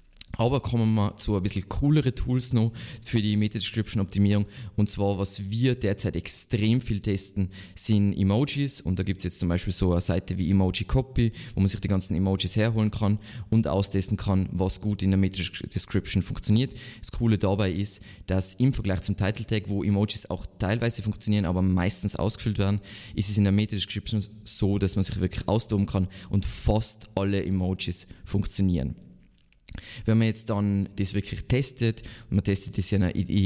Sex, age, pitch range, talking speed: male, 20-39, 95-110 Hz, 190 wpm